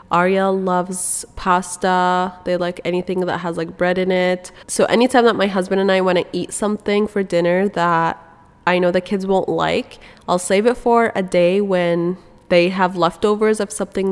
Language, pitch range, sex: English, 175-205 Hz, female